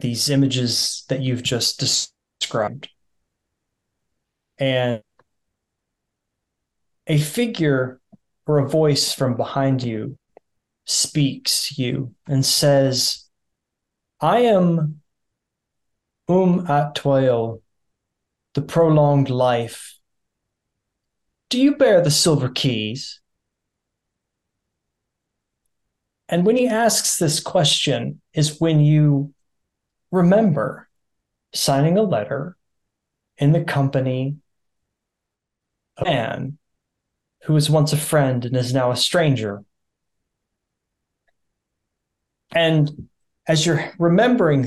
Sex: male